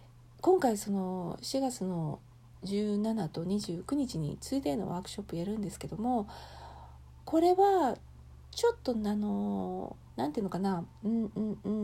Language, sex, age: Japanese, female, 40-59